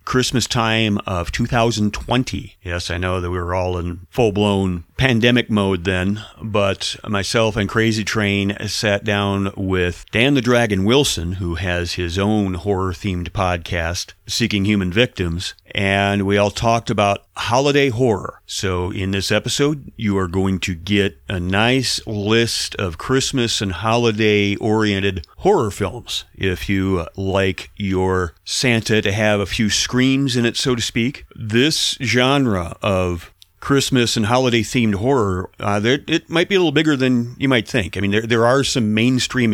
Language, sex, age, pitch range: English, male, 40-59, 95-120 Hz